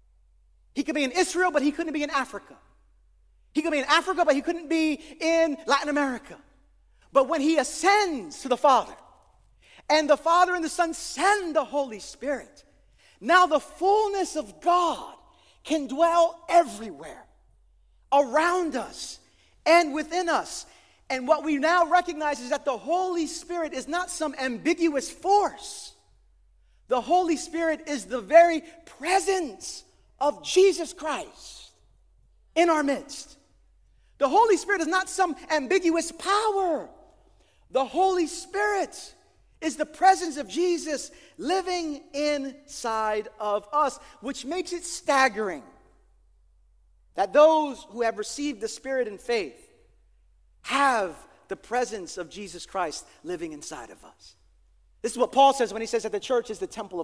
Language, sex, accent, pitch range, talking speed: English, male, American, 265-345 Hz, 145 wpm